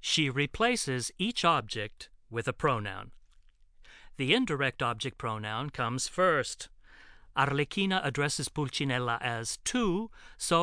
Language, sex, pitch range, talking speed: Italian, male, 110-165 Hz, 105 wpm